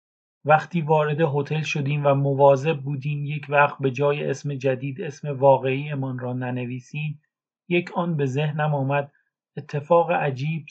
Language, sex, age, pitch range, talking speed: Persian, male, 40-59, 135-155 Hz, 140 wpm